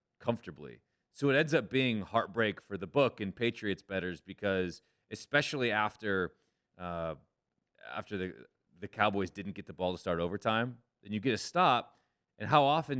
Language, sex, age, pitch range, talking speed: English, male, 30-49, 90-110 Hz, 165 wpm